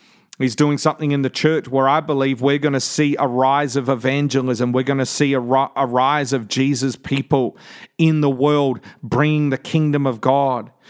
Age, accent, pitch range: 40-59, Australian, 140-165 Hz